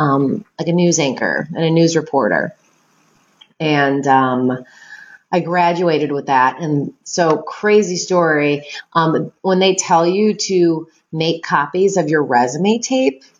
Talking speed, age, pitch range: 140 wpm, 30-49, 155-190 Hz